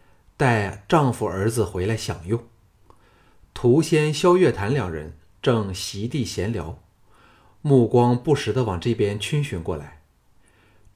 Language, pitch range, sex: Chinese, 100-130 Hz, male